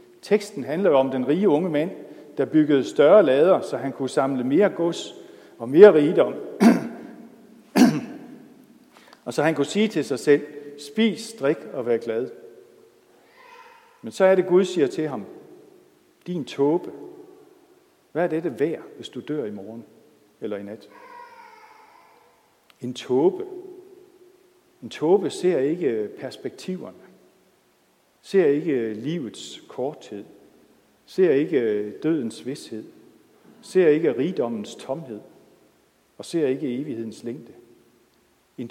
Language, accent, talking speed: Danish, native, 130 wpm